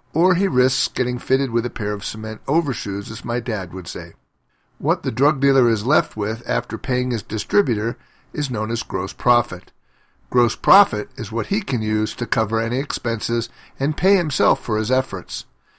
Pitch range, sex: 110-140 Hz, male